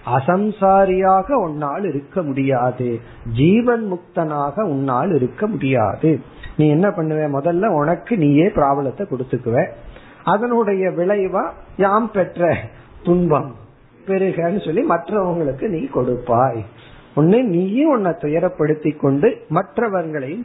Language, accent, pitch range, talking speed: Tamil, native, 140-190 Hz, 95 wpm